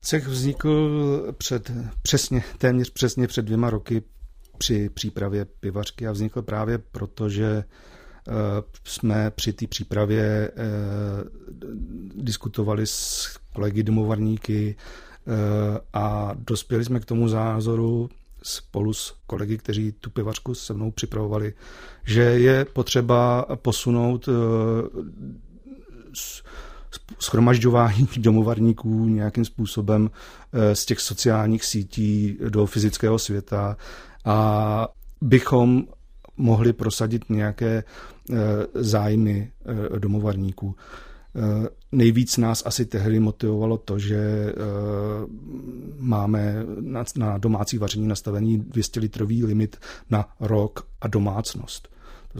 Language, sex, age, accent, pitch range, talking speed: Czech, male, 40-59, native, 105-120 Hz, 95 wpm